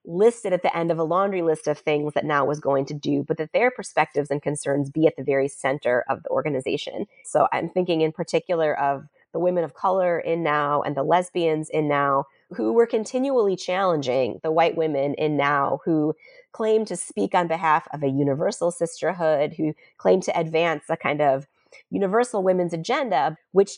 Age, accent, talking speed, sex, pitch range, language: 30-49, American, 195 wpm, female, 150-185 Hz, English